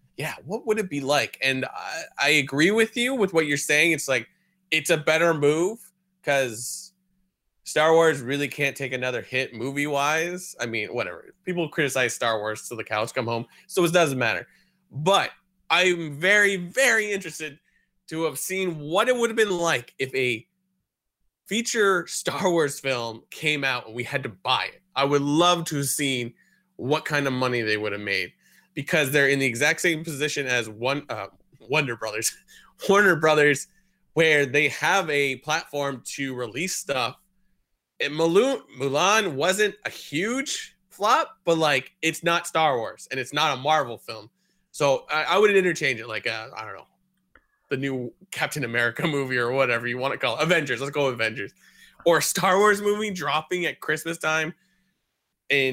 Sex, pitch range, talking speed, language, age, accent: male, 135-185 Hz, 180 wpm, English, 20-39, American